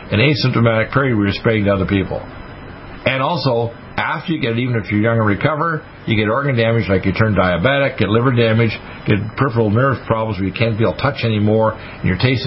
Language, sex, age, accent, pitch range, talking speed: English, male, 50-69, American, 105-130 Hz, 220 wpm